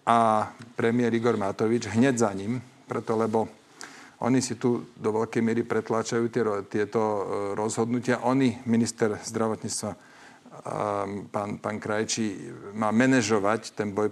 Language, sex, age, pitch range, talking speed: Slovak, male, 50-69, 110-120 Hz, 120 wpm